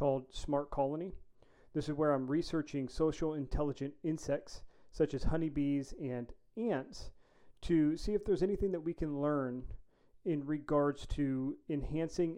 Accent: American